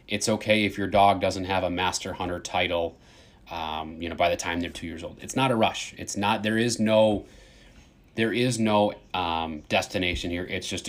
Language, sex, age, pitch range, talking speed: English, male, 30-49, 90-110 Hz, 210 wpm